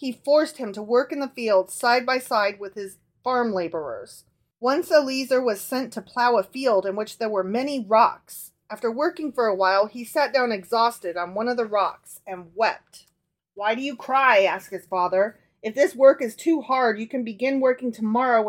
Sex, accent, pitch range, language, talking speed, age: female, American, 200-265 Hz, English, 205 wpm, 30-49